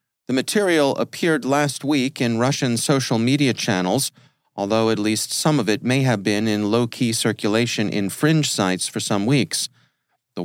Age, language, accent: 40-59, English, American